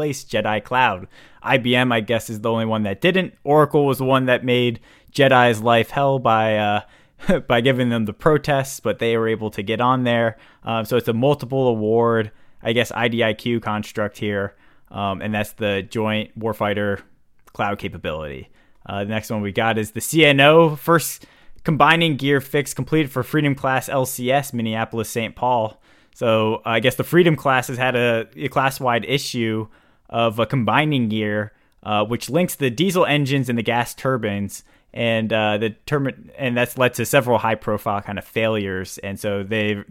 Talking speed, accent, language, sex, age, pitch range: 175 wpm, American, English, male, 20-39, 110-135 Hz